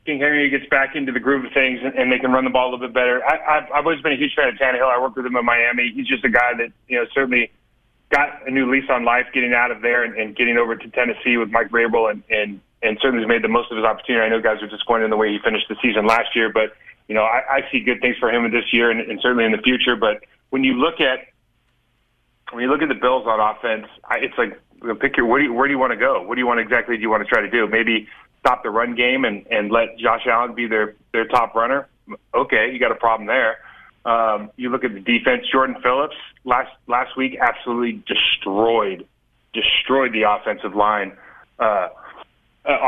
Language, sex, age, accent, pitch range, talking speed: English, male, 30-49, American, 110-130 Hz, 260 wpm